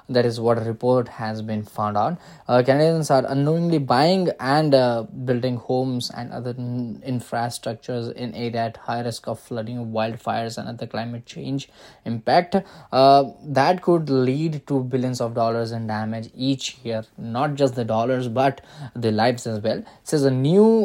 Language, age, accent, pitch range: English, 10-29, Indian, 120-145 Hz